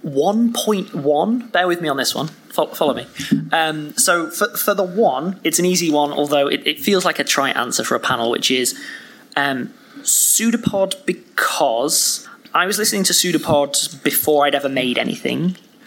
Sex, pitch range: male, 145-210 Hz